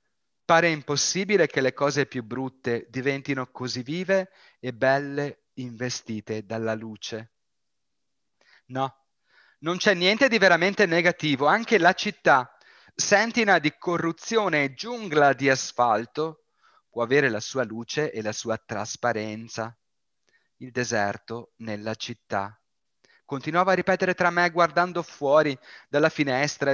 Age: 30-49